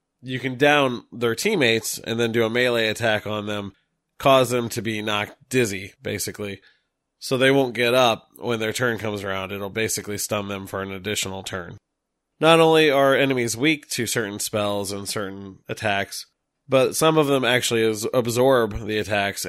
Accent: American